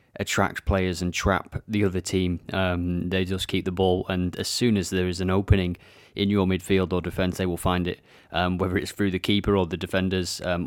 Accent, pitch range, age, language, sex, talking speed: British, 95-115 Hz, 30-49, English, male, 225 wpm